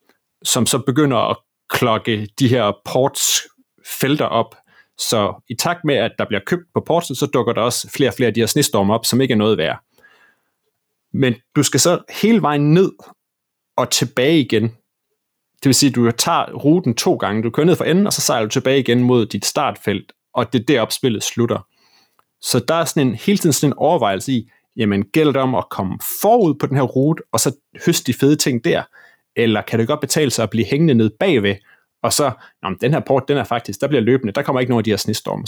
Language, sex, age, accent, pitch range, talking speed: Danish, male, 30-49, native, 110-145 Hz, 225 wpm